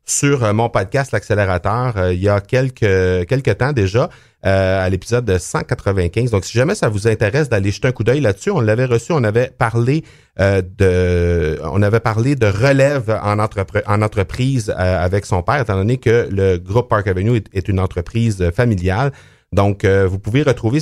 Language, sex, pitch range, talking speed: French, male, 95-125 Hz, 195 wpm